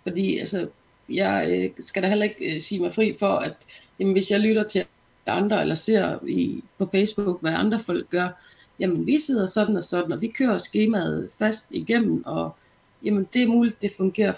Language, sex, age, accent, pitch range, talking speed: Danish, female, 30-49, native, 180-220 Hz, 195 wpm